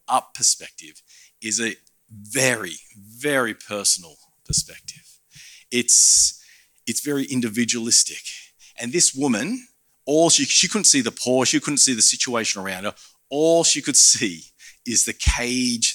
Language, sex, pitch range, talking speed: English, male, 105-130 Hz, 135 wpm